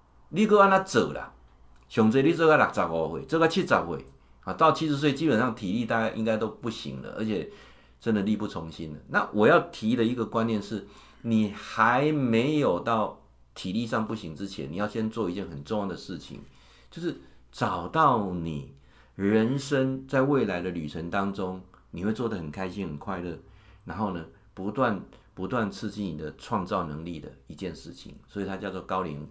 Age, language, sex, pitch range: 50-69, Chinese, male, 70-115 Hz